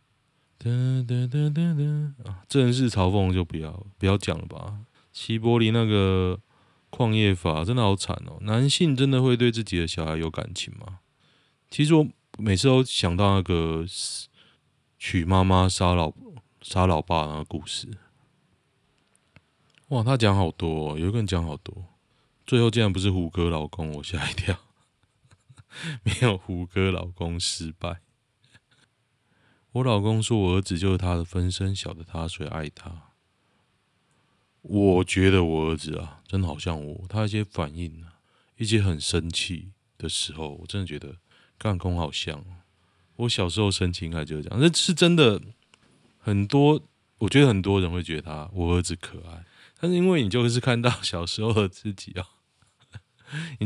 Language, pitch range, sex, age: Chinese, 90-120 Hz, male, 20-39